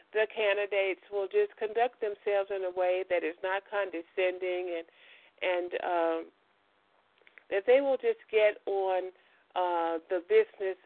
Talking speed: 140 wpm